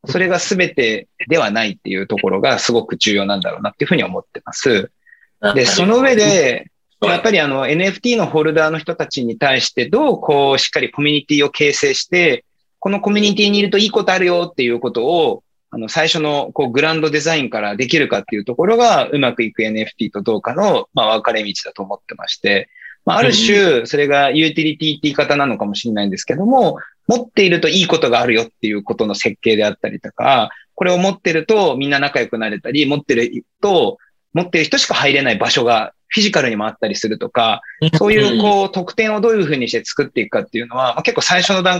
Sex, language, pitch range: male, Japanese, 140-210 Hz